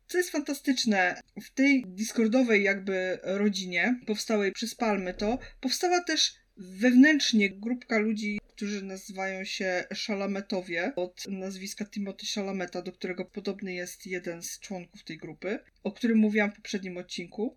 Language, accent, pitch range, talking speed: Polish, native, 180-230 Hz, 135 wpm